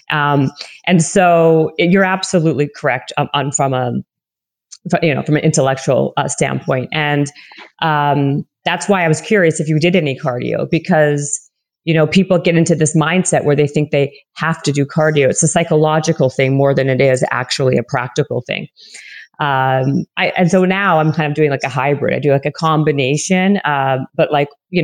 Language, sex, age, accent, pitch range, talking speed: English, female, 40-59, American, 145-180 Hz, 190 wpm